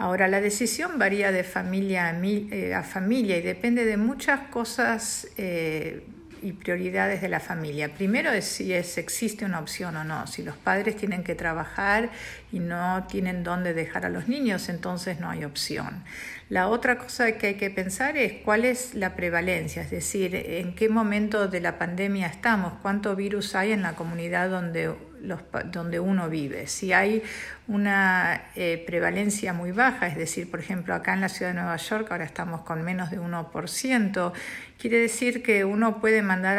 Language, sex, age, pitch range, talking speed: Spanish, female, 50-69, 175-210 Hz, 175 wpm